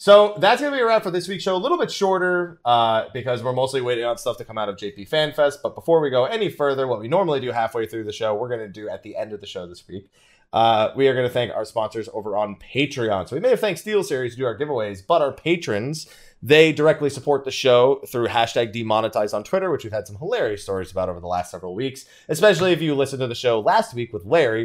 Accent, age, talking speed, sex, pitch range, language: American, 20-39, 270 wpm, male, 100-155 Hz, English